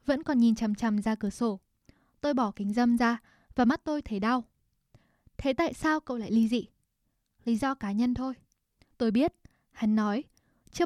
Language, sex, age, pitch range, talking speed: Vietnamese, female, 10-29, 225-285 Hz, 195 wpm